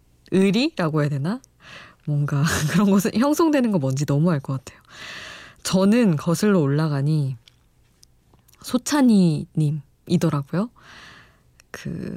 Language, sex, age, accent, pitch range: Korean, female, 20-39, native, 145-195 Hz